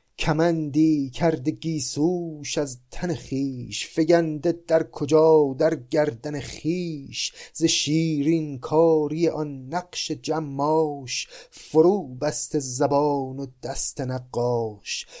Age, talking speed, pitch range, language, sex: 30-49, 95 wpm, 120-150 Hz, Persian, male